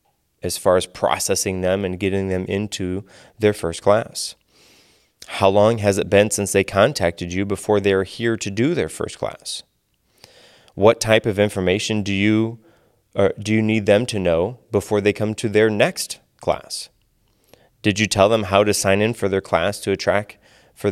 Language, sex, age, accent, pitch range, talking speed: English, male, 20-39, American, 95-110 Hz, 185 wpm